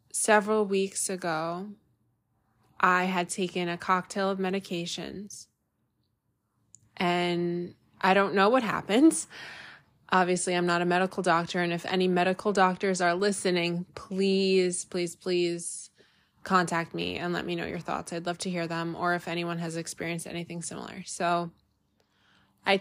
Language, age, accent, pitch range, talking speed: English, 20-39, American, 170-190 Hz, 140 wpm